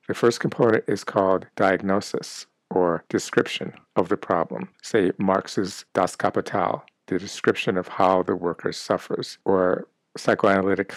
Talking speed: 130 wpm